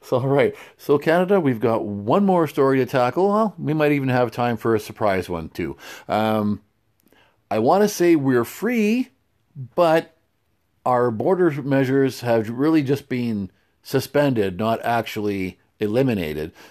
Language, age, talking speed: English, 50-69, 150 wpm